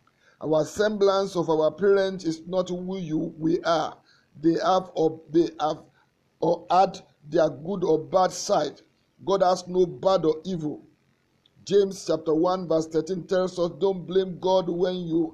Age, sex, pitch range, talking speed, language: 50-69, male, 165-190 Hz, 160 wpm, English